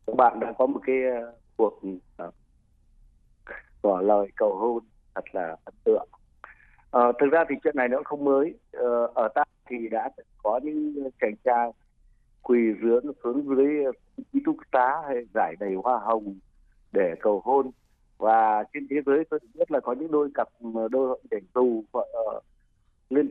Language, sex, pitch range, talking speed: Vietnamese, male, 115-145 Hz, 165 wpm